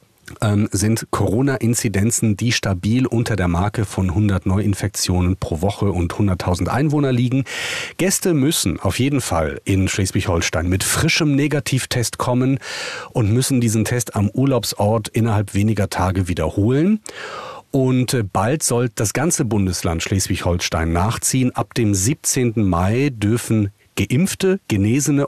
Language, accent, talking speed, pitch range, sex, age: German, German, 125 wpm, 100-125 Hz, male, 40-59